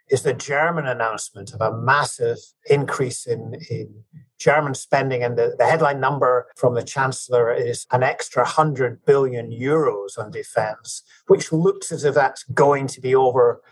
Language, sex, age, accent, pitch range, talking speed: English, male, 50-69, British, 125-200 Hz, 160 wpm